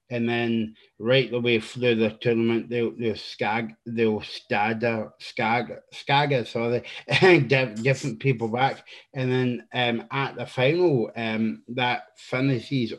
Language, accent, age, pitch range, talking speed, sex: English, British, 30-49, 115-135 Hz, 130 wpm, male